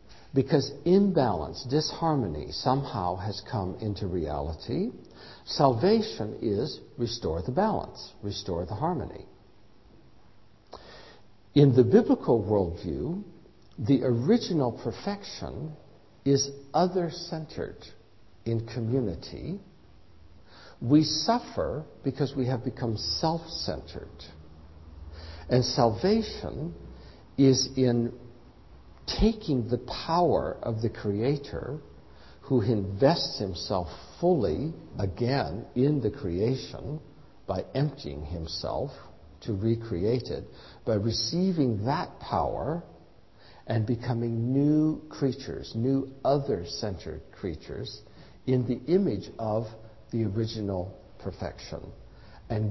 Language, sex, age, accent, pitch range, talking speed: English, male, 60-79, American, 90-140 Hz, 90 wpm